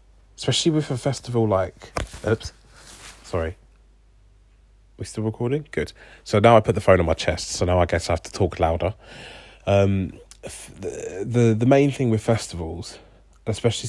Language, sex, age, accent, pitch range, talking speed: English, male, 30-49, British, 90-110 Hz, 165 wpm